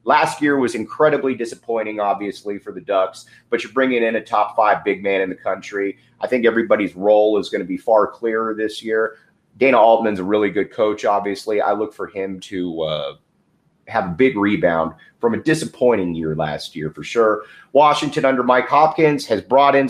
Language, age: English, 30-49